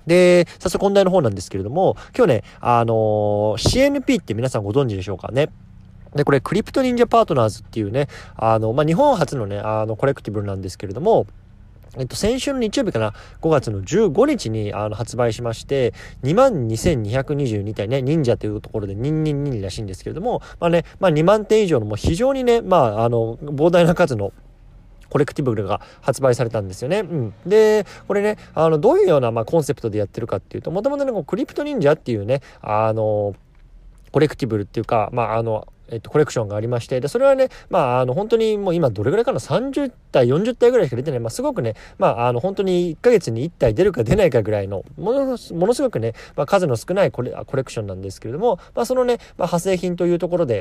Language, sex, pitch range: Japanese, male, 110-180 Hz